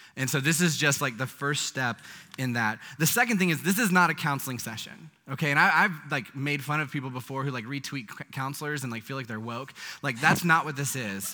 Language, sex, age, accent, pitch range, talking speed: English, male, 20-39, American, 120-160 Hz, 255 wpm